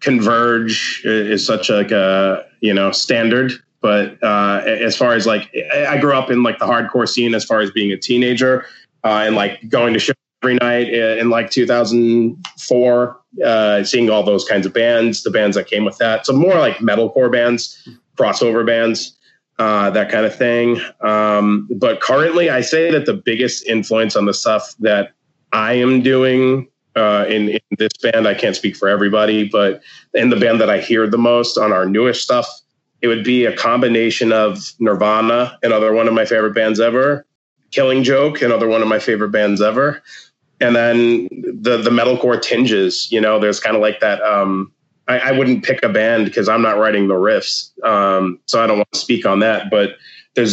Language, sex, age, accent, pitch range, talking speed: English, male, 30-49, American, 105-125 Hz, 195 wpm